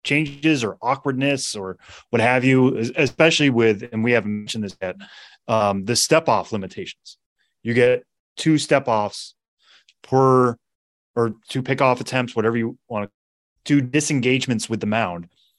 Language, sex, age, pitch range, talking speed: English, male, 20-39, 105-135 Hz, 140 wpm